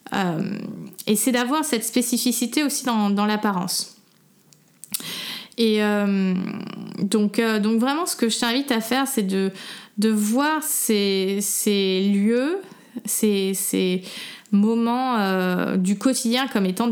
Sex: female